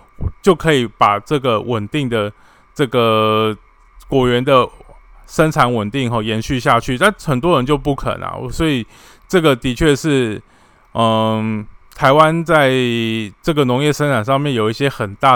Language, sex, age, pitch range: Chinese, male, 20-39, 110-140 Hz